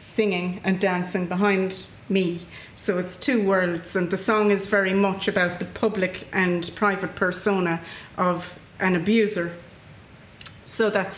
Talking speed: 140 wpm